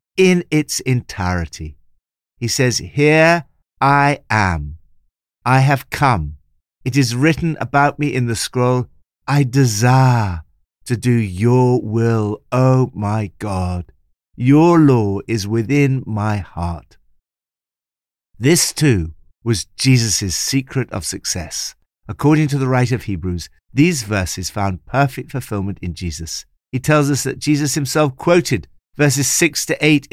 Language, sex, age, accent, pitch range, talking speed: English, male, 50-69, British, 85-125 Hz, 130 wpm